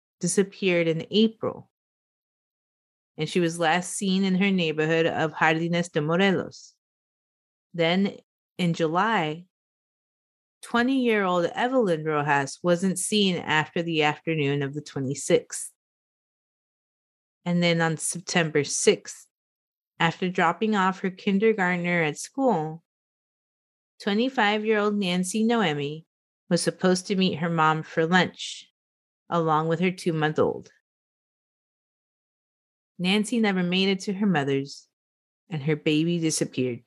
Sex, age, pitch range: female, 30-49, 155-195 Hz